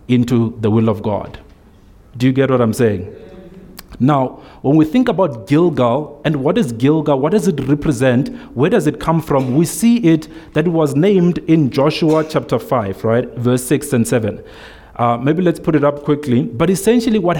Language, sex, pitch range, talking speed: English, male, 130-165 Hz, 195 wpm